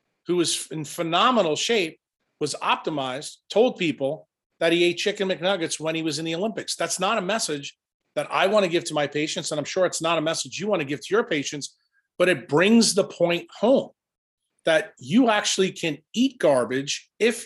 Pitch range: 165-220 Hz